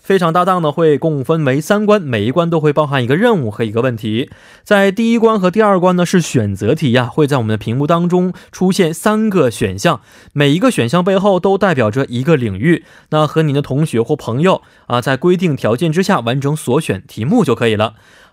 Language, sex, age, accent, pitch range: Korean, male, 20-39, Chinese, 115-180 Hz